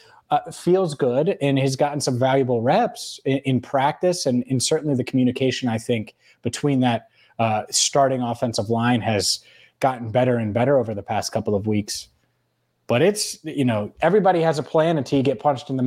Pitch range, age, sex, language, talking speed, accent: 125-150 Hz, 20-39, male, English, 190 wpm, American